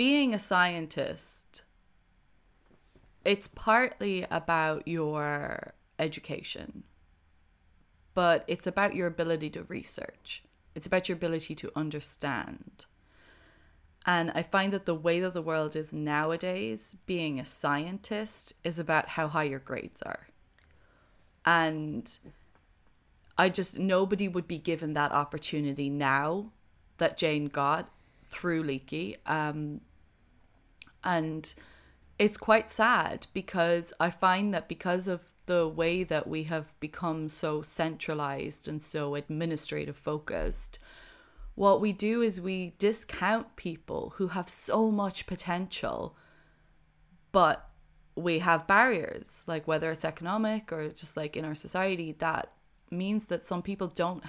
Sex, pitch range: female, 150-185 Hz